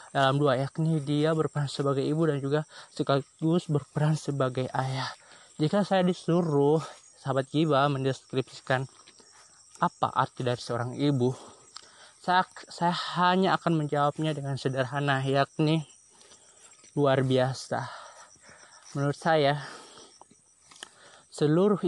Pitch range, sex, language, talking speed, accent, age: 135-165 Hz, male, Indonesian, 100 wpm, native, 20-39